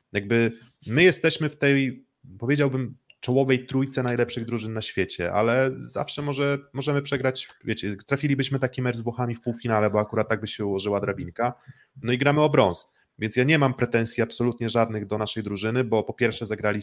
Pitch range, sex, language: 110-130 Hz, male, Polish